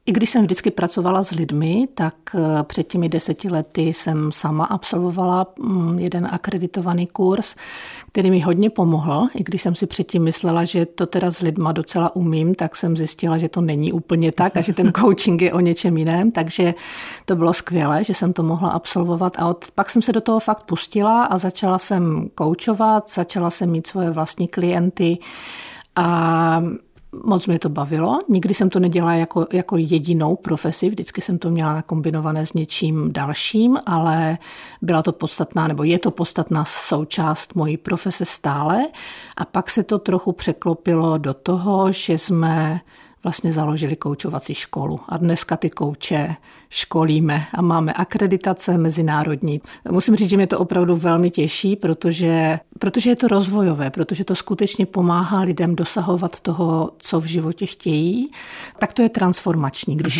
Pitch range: 165-190 Hz